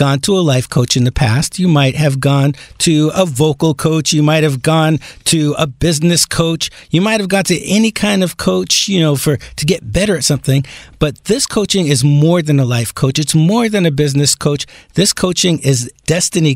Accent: American